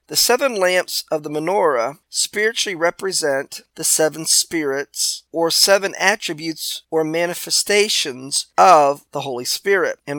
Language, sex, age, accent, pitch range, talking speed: English, male, 40-59, American, 145-185 Hz, 125 wpm